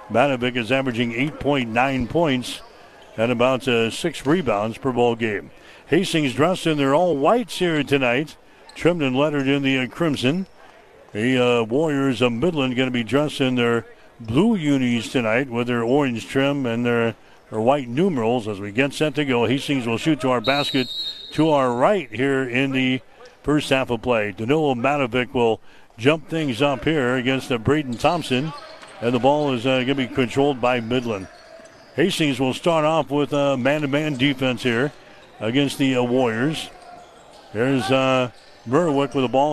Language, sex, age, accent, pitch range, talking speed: English, male, 60-79, American, 125-145 Hz, 175 wpm